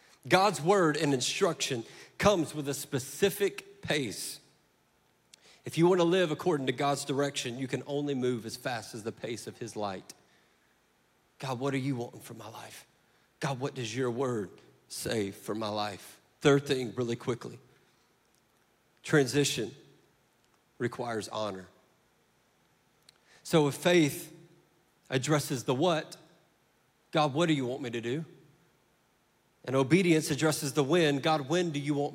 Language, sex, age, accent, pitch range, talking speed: English, male, 40-59, American, 120-150 Hz, 145 wpm